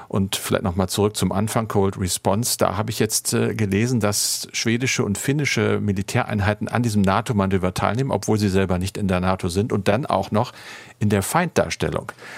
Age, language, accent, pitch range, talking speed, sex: 50-69, German, German, 95-110 Hz, 185 wpm, male